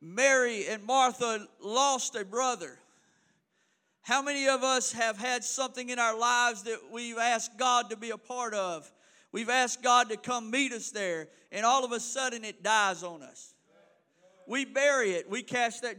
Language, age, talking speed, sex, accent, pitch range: English, 40-59, 180 wpm, male, American, 220-260 Hz